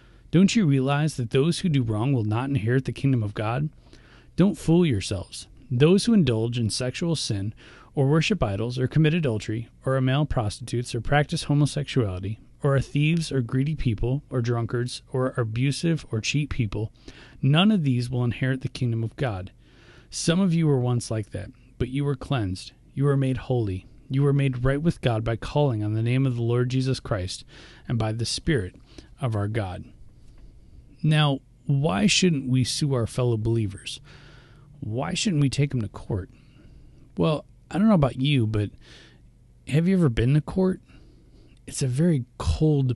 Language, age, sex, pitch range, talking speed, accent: English, 30-49, male, 115-145 Hz, 180 wpm, American